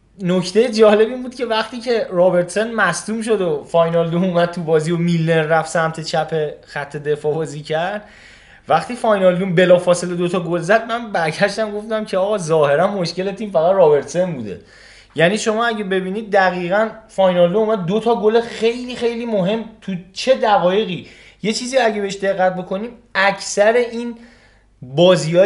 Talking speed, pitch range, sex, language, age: 160 wpm, 135-195 Hz, male, Persian, 20-39